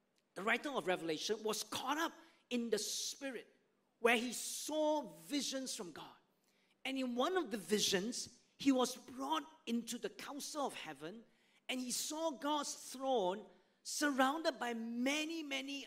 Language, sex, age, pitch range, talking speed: English, male, 40-59, 215-280 Hz, 150 wpm